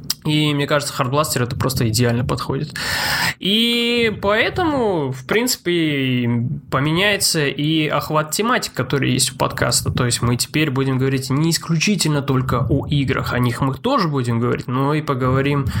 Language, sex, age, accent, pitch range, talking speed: Russian, male, 20-39, native, 130-170 Hz, 150 wpm